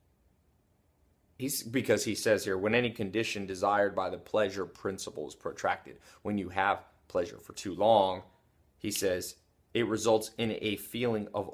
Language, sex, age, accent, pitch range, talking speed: English, male, 30-49, American, 95-125 Hz, 155 wpm